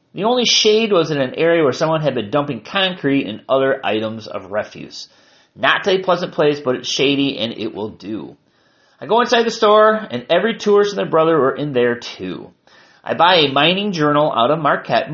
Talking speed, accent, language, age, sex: 210 wpm, American, English, 30-49, male